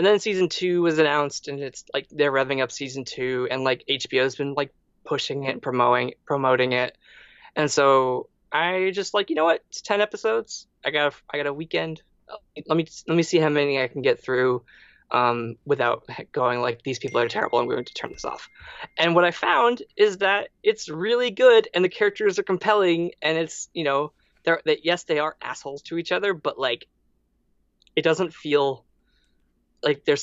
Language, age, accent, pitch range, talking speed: English, 20-39, American, 135-175 Hz, 210 wpm